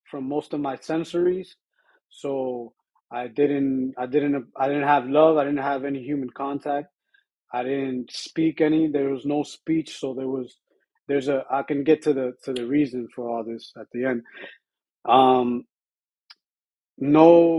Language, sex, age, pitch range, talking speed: English, male, 30-49, 125-160 Hz, 165 wpm